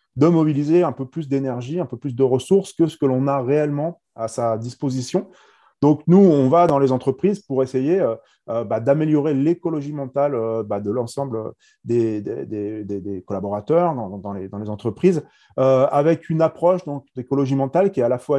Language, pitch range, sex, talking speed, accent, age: French, 115-145 Hz, male, 200 wpm, French, 30-49